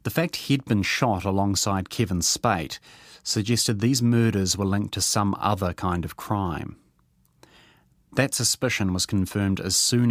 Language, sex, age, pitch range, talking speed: English, male, 30-49, 90-115 Hz, 150 wpm